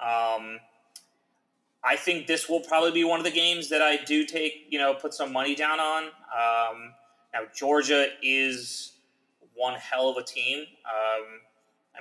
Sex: male